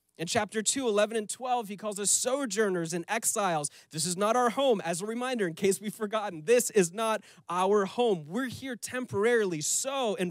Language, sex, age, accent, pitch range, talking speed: English, male, 30-49, American, 145-215 Hz, 200 wpm